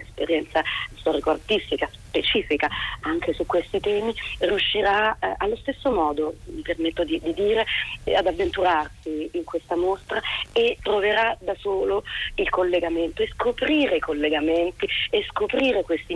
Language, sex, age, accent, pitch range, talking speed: Italian, female, 40-59, native, 165-215 Hz, 135 wpm